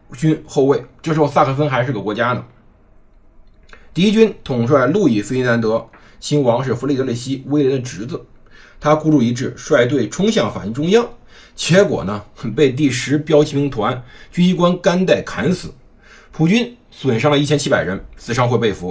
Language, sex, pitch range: Chinese, male, 115-160 Hz